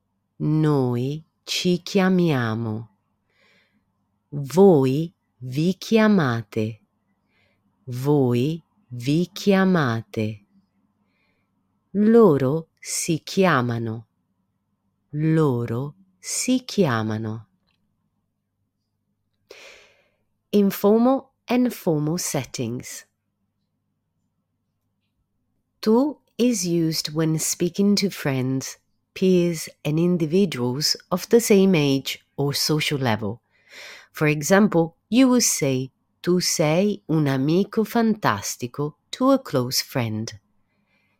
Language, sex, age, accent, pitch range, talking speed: Italian, female, 30-49, native, 120-190 Hz, 75 wpm